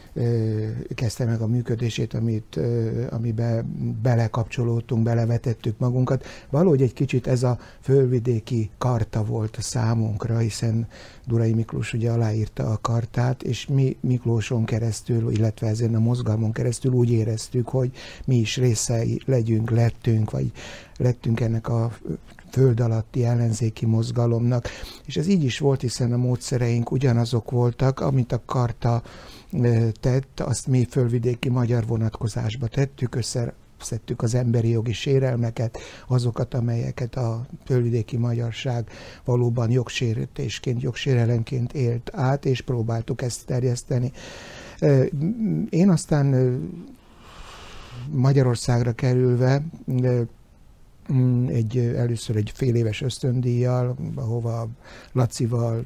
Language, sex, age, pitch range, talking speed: Hungarian, male, 60-79, 115-130 Hz, 110 wpm